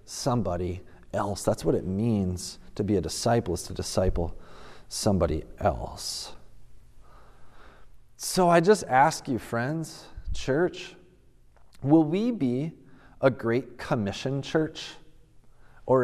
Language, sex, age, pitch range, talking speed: English, male, 40-59, 110-155 Hz, 110 wpm